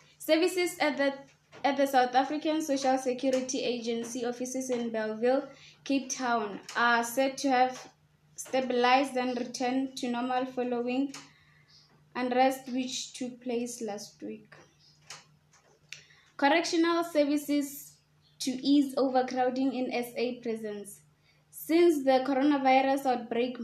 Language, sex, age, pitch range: English, female, 20-39, 230-270 Hz